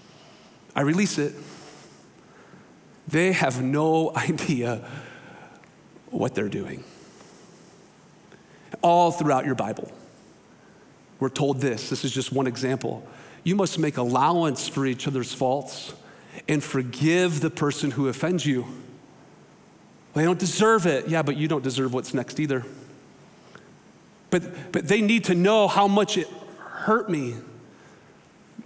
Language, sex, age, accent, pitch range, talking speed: English, male, 40-59, American, 130-160 Hz, 130 wpm